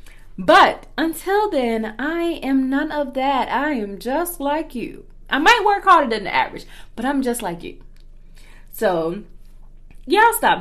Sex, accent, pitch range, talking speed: female, American, 170-285 Hz, 160 wpm